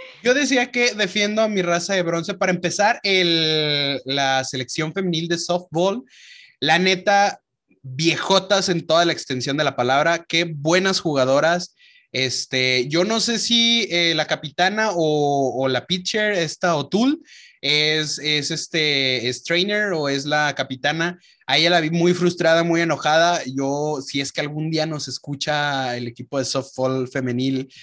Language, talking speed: Spanish, 155 wpm